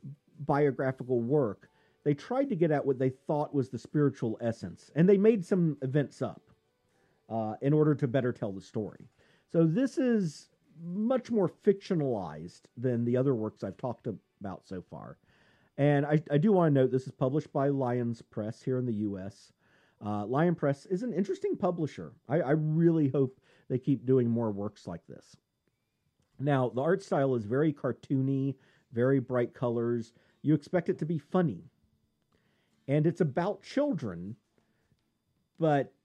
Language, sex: English, male